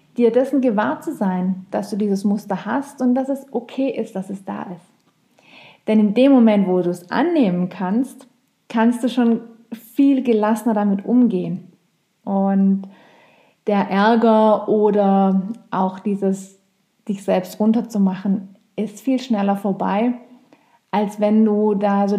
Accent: German